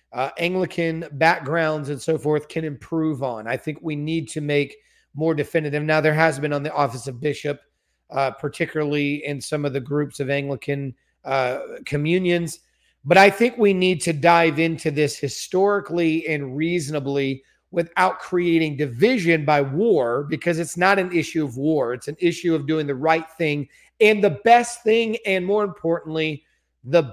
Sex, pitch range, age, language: male, 150-190 Hz, 40-59, English